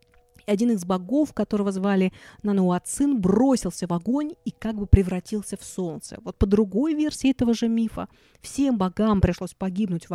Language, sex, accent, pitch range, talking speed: Russian, female, native, 180-225 Hz, 165 wpm